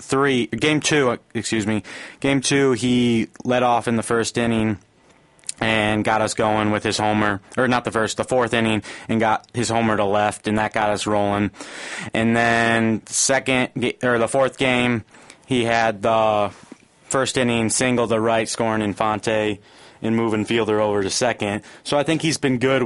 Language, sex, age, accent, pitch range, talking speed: English, male, 30-49, American, 105-120 Hz, 180 wpm